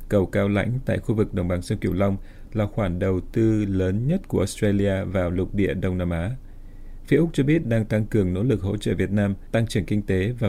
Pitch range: 95-110 Hz